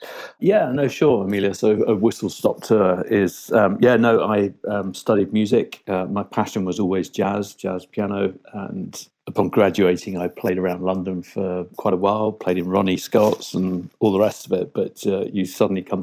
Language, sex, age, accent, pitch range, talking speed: English, male, 50-69, British, 95-100 Hz, 185 wpm